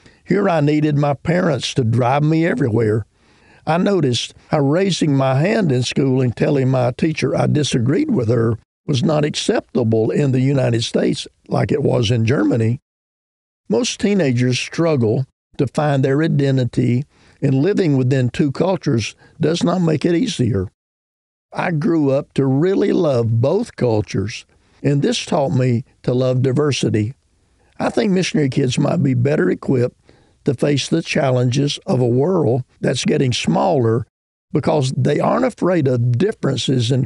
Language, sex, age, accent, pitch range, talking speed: English, male, 50-69, American, 120-155 Hz, 150 wpm